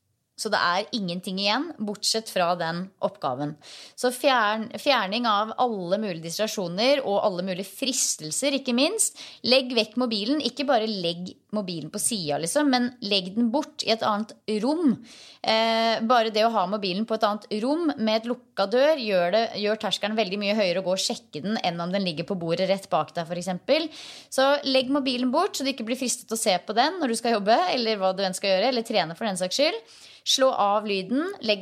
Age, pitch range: 20-39, 195-255 Hz